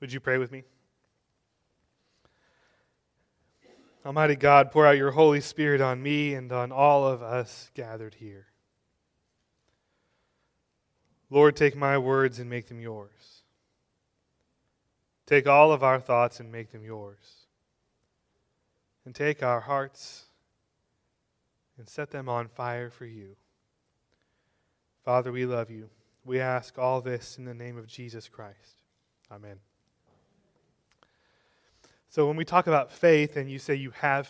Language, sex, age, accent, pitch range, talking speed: English, male, 20-39, American, 120-145 Hz, 130 wpm